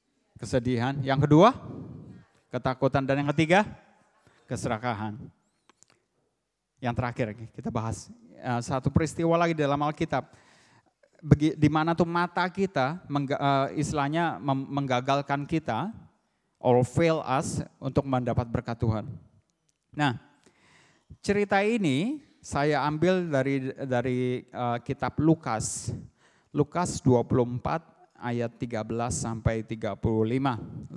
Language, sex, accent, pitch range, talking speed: English, male, Indonesian, 120-155 Hz, 90 wpm